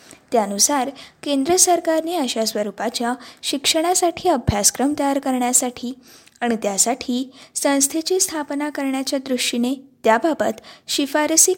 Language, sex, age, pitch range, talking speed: Marathi, female, 20-39, 240-300 Hz, 90 wpm